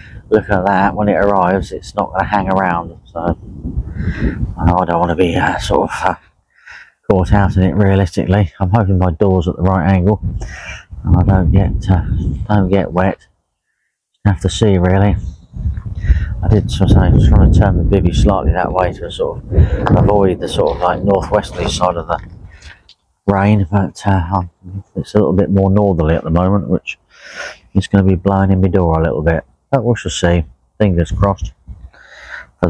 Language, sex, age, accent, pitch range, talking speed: English, male, 30-49, British, 85-100 Hz, 185 wpm